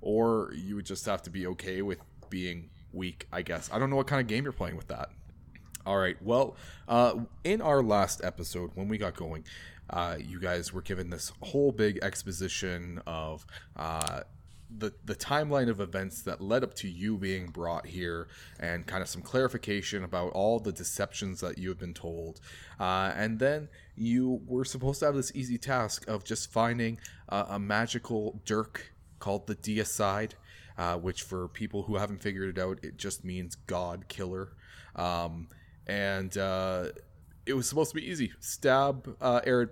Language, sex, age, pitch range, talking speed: English, male, 20-39, 90-110 Hz, 180 wpm